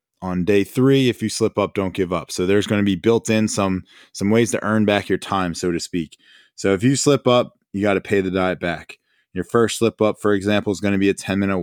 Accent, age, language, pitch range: American, 20-39, English, 95-110 Hz